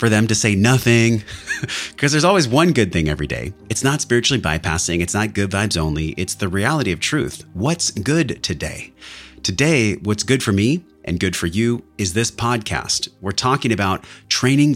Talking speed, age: 185 wpm, 30-49